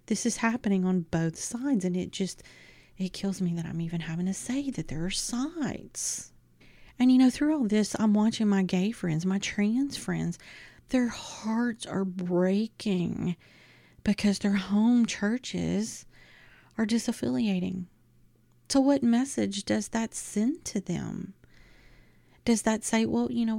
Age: 30-49